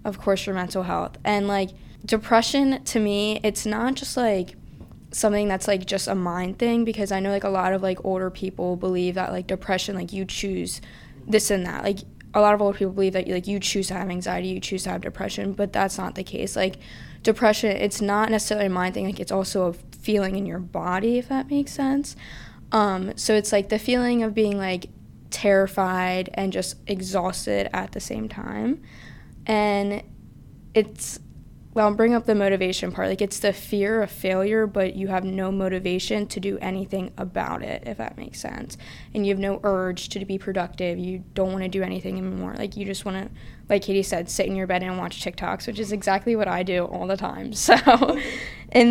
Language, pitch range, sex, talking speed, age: English, 185-215 Hz, female, 210 wpm, 20-39